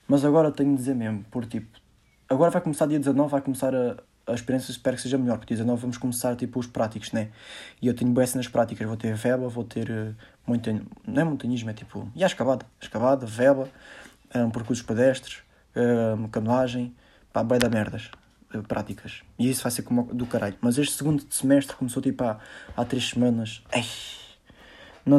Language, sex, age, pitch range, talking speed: Portuguese, male, 20-39, 110-130 Hz, 200 wpm